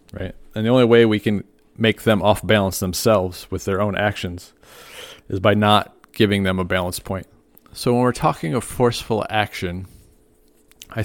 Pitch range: 95-115 Hz